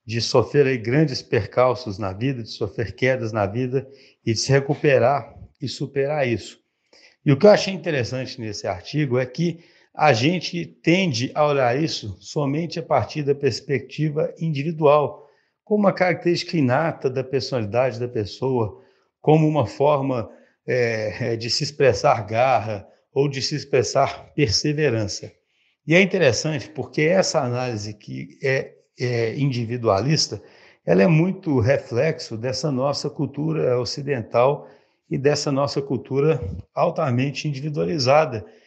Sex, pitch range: male, 125-155 Hz